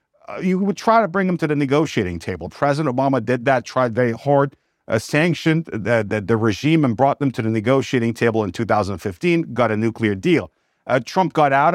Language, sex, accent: English, male, American